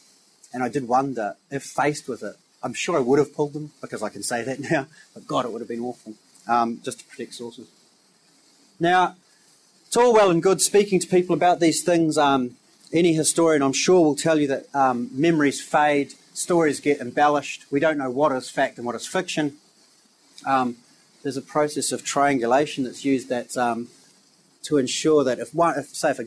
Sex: male